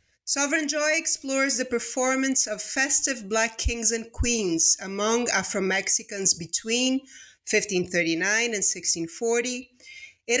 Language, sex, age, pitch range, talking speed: English, female, 30-49, 195-250 Hz, 105 wpm